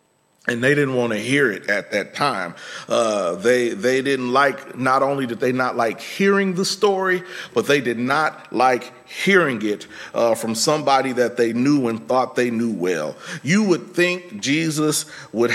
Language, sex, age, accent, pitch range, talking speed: English, male, 40-59, American, 120-160 Hz, 180 wpm